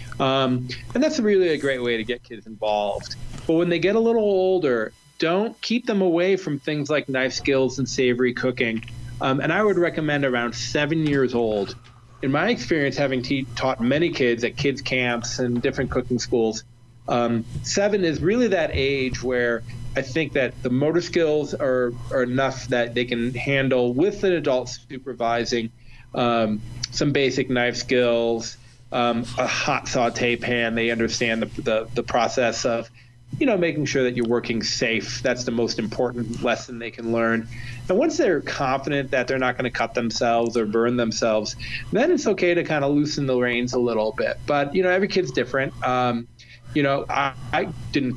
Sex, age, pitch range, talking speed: male, 30-49, 120-140 Hz, 185 wpm